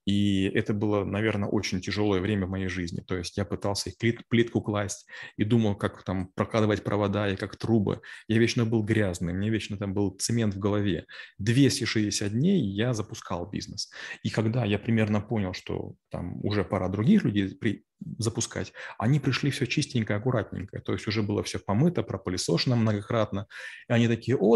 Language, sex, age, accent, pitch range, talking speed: Russian, male, 20-39, native, 105-125 Hz, 175 wpm